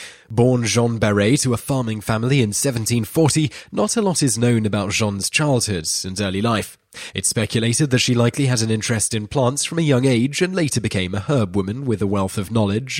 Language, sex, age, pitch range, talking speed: English, male, 20-39, 100-130 Hz, 210 wpm